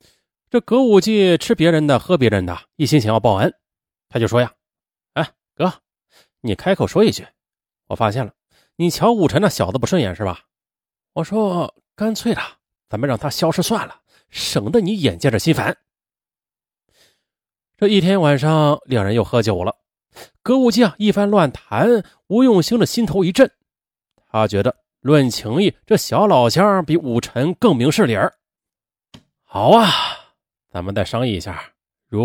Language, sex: Chinese, male